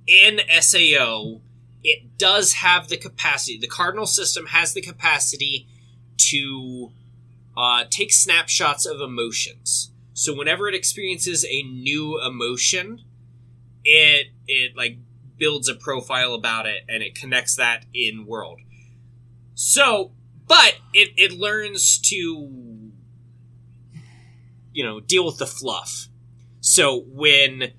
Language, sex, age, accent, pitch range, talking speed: English, male, 20-39, American, 120-145 Hz, 115 wpm